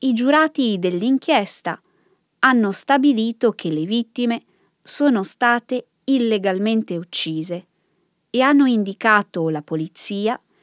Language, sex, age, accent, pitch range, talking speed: Italian, female, 20-39, native, 175-260 Hz, 95 wpm